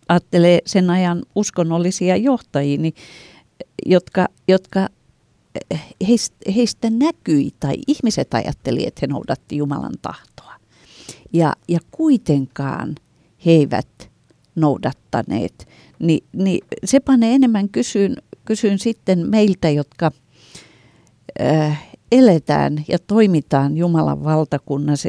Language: Finnish